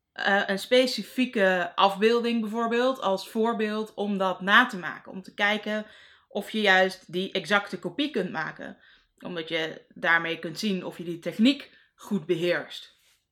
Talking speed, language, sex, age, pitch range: 155 wpm, Dutch, female, 20-39, 185-235 Hz